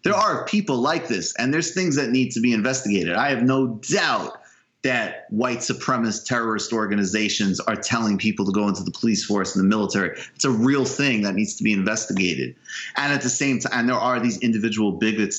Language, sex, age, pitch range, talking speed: English, male, 30-49, 105-135 Hz, 205 wpm